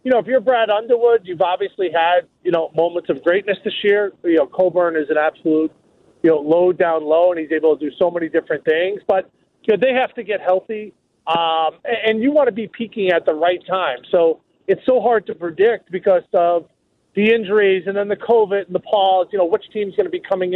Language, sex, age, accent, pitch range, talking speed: English, male, 40-59, American, 175-215 Hz, 235 wpm